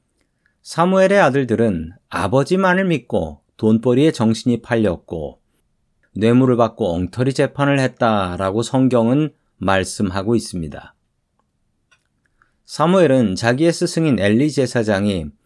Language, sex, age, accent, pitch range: Korean, male, 40-59, native, 110-140 Hz